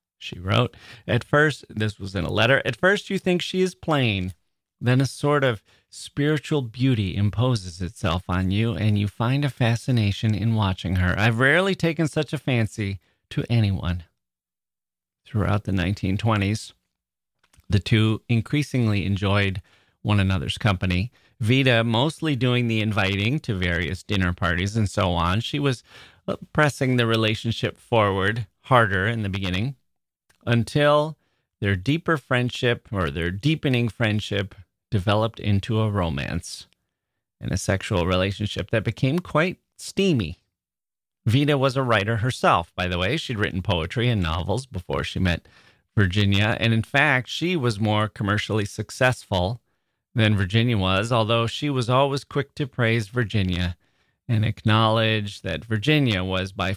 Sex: male